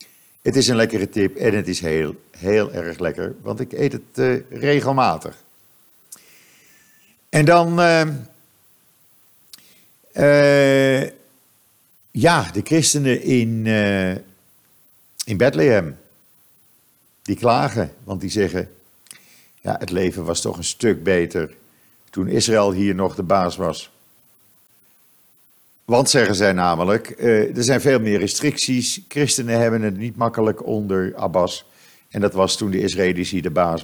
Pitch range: 95-125 Hz